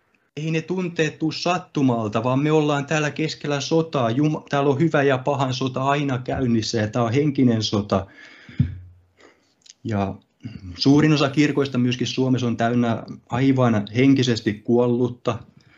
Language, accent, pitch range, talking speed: Finnish, native, 110-130 Hz, 135 wpm